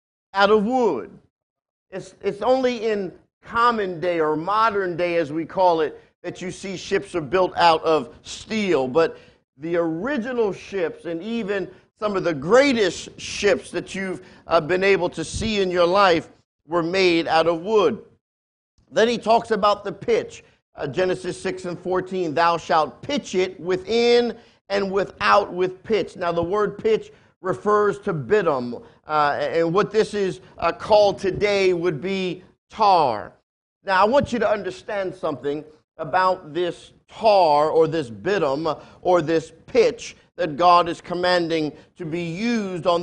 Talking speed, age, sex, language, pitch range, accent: 160 wpm, 50-69, male, English, 170-210 Hz, American